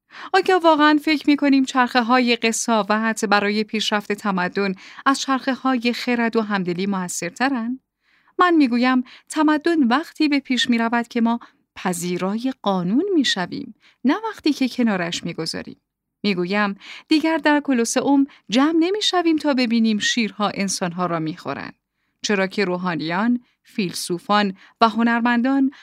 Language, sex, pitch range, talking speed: Persian, female, 200-270 Hz, 120 wpm